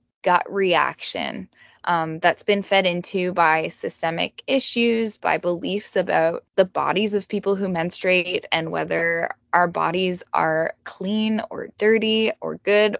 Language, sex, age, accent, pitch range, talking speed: English, female, 10-29, American, 170-220 Hz, 135 wpm